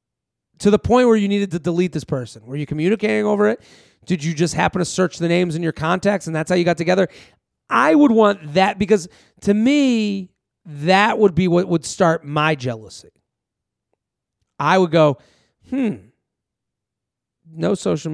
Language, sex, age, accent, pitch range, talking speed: English, male, 30-49, American, 145-190 Hz, 175 wpm